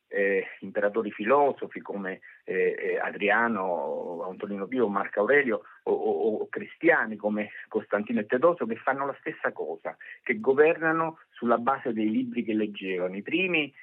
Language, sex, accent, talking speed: Italian, male, native, 150 wpm